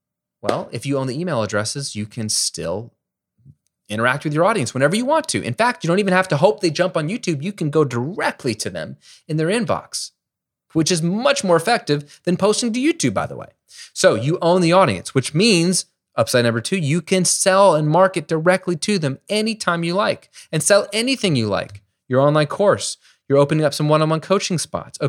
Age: 30-49